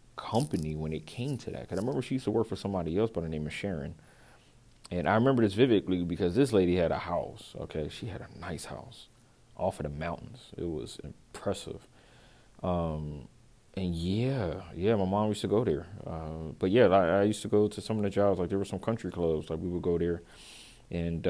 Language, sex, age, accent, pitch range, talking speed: English, male, 30-49, American, 85-105 Hz, 225 wpm